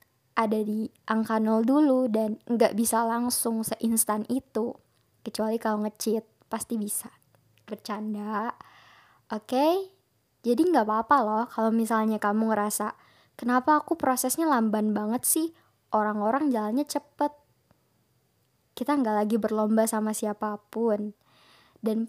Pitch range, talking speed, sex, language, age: 220-255 Hz, 115 wpm, male, Indonesian, 10-29